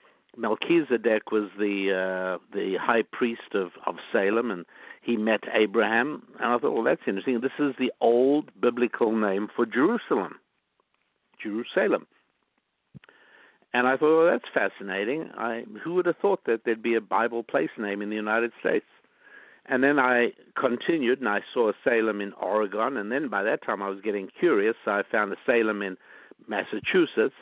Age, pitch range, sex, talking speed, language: 60-79, 100-125 Hz, male, 170 wpm, English